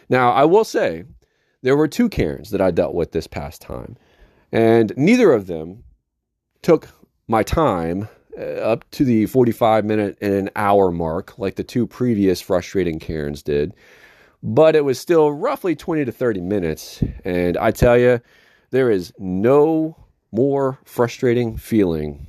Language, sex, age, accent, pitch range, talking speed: English, male, 40-59, American, 90-130 Hz, 155 wpm